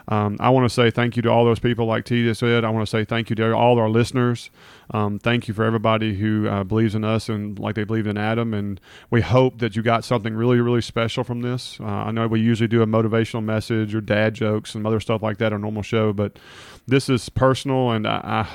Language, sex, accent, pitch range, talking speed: English, male, American, 110-130 Hz, 260 wpm